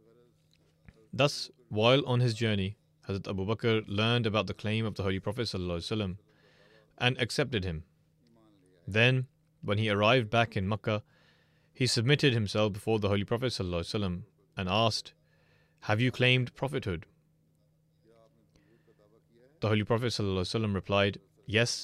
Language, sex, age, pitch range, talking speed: English, male, 30-49, 95-125 Hz, 120 wpm